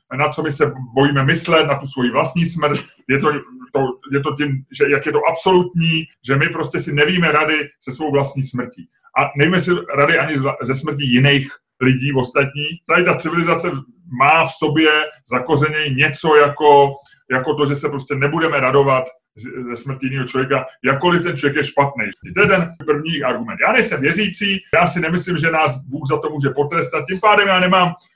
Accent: native